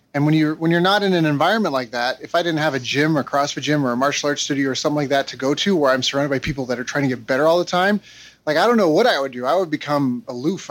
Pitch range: 135-170 Hz